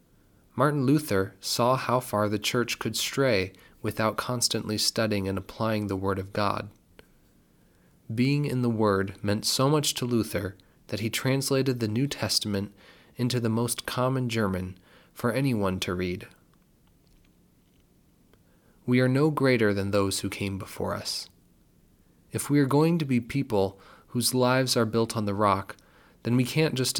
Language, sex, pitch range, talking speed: English, male, 100-125 Hz, 155 wpm